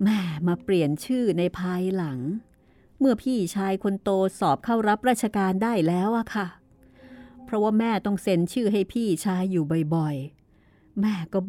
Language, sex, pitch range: Thai, female, 185-245 Hz